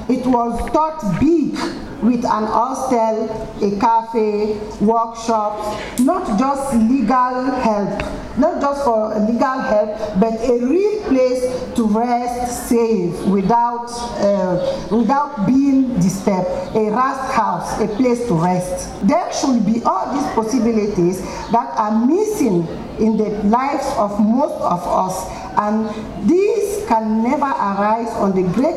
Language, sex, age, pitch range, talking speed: German, female, 50-69, 210-260 Hz, 130 wpm